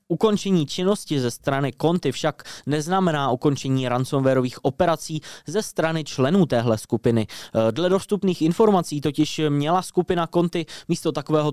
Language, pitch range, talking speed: Czech, 125-160 Hz, 125 wpm